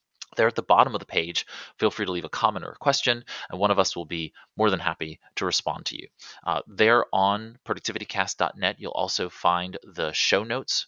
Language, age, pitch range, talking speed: English, 30-49, 85-100 Hz, 215 wpm